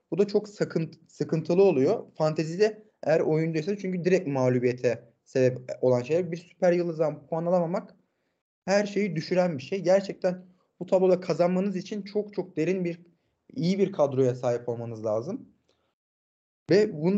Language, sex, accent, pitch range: Turkish, male, native, 140-185 Hz